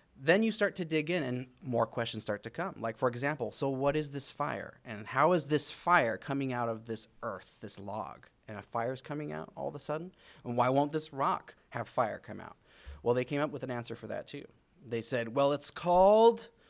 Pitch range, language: 120-155 Hz, English